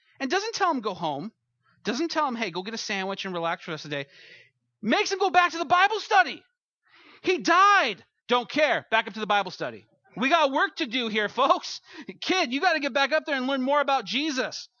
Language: English